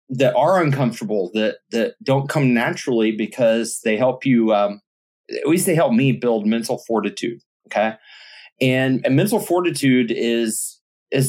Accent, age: American, 30-49